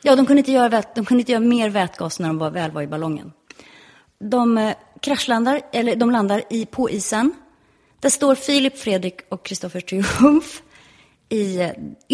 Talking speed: 185 wpm